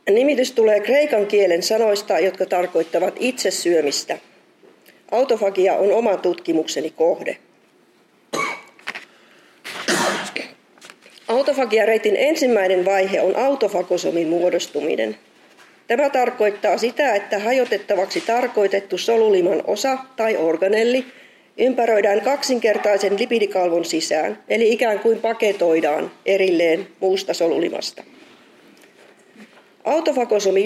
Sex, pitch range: female, 185-240 Hz